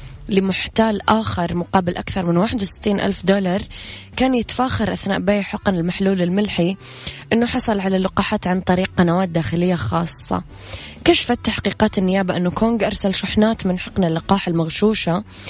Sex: female